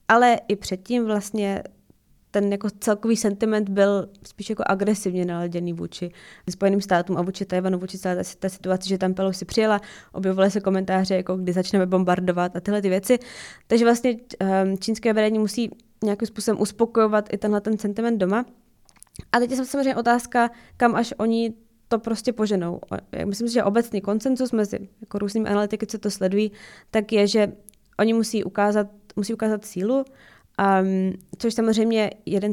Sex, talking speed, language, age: female, 160 wpm, Czech, 20-39